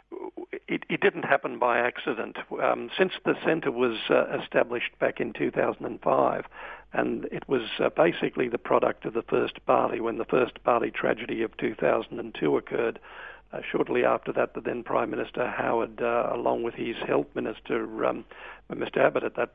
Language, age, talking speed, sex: English, 60-79, 170 wpm, male